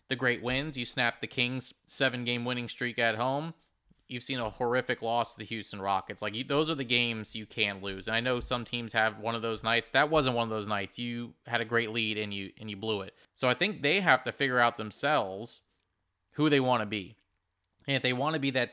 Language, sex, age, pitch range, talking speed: English, male, 30-49, 110-130 Hz, 255 wpm